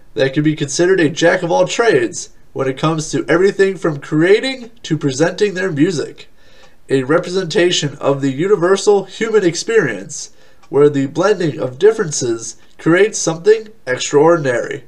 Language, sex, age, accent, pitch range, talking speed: English, male, 30-49, American, 145-200 Hz, 130 wpm